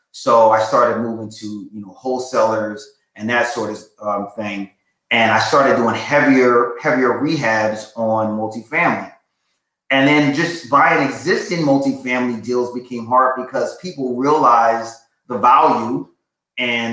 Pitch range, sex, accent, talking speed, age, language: 110-130 Hz, male, American, 135 wpm, 30-49, English